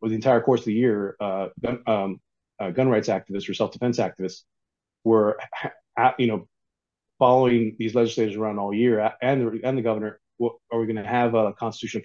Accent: American